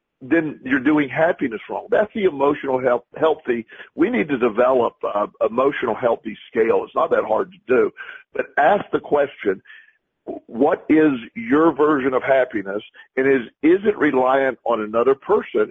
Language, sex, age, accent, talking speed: English, male, 50-69, American, 160 wpm